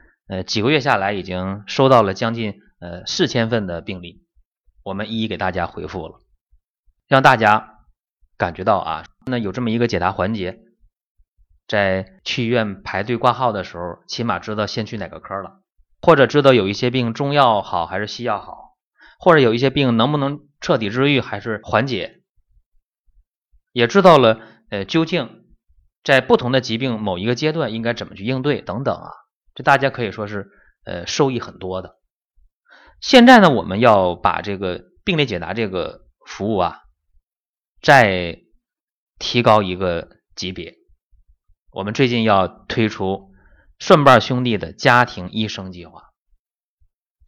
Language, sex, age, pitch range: Chinese, male, 30-49, 95-125 Hz